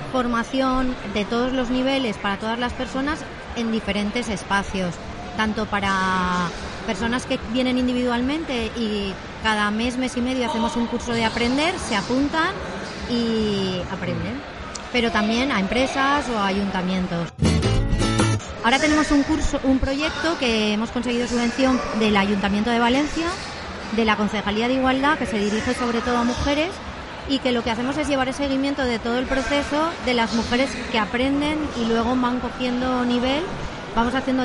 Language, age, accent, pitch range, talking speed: Spanish, 30-49, Spanish, 210-260 Hz, 155 wpm